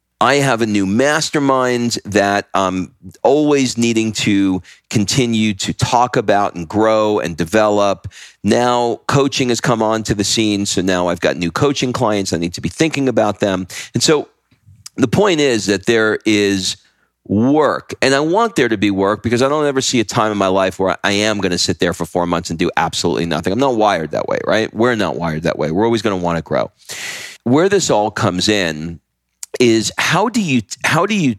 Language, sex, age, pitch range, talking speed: English, male, 40-59, 95-125 Hz, 205 wpm